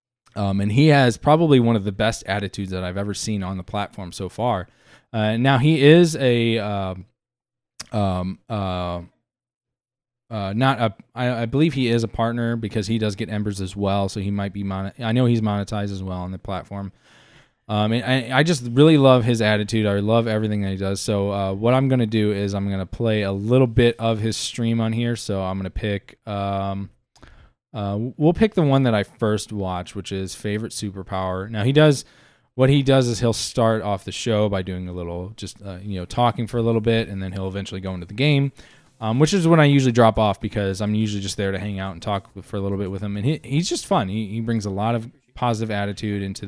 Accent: American